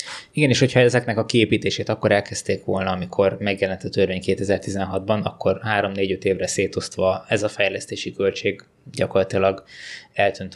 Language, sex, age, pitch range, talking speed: Hungarian, male, 20-39, 95-110 Hz, 135 wpm